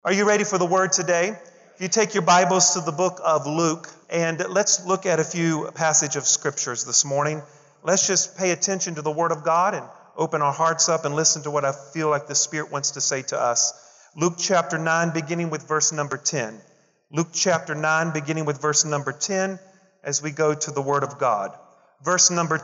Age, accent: 40-59, American